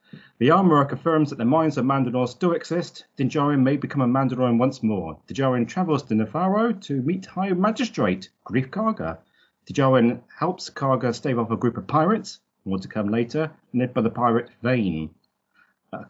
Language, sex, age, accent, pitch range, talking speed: English, male, 40-59, British, 115-155 Hz, 180 wpm